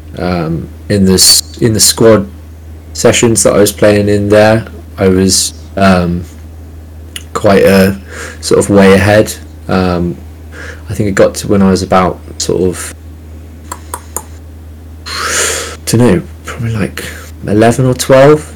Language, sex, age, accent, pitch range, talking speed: English, male, 30-49, British, 80-105 Hz, 135 wpm